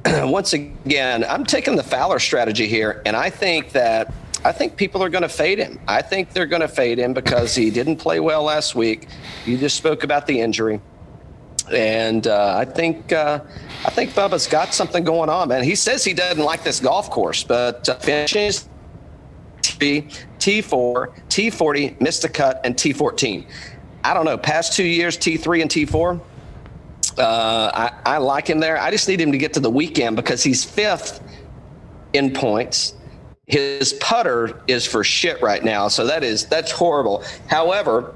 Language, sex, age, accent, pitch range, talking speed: English, male, 40-59, American, 120-160 Hz, 185 wpm